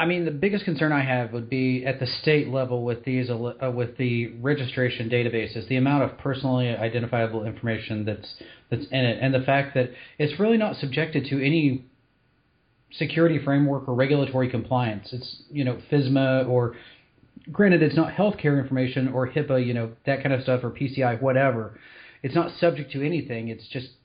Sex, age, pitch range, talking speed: male, 30-49, 120-140 Hz, 180 wpm